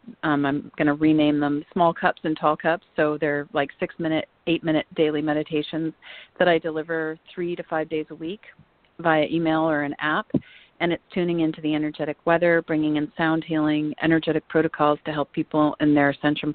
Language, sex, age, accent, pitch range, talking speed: English, female, 40-59, American, 150-170 Hz, 185 wpm